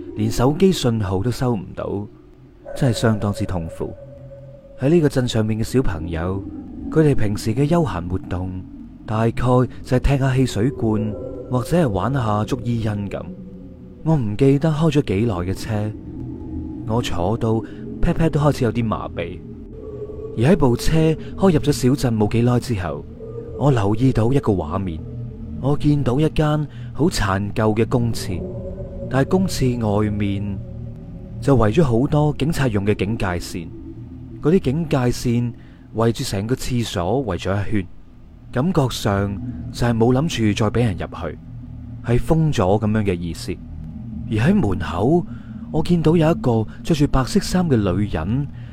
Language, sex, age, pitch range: Chinese, male, 30-49, 100-140 Hz